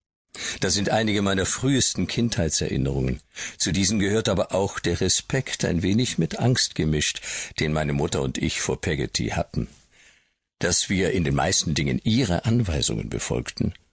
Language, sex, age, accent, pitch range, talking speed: German, male, 50-69, German, 80-115 Hz, 150 wpm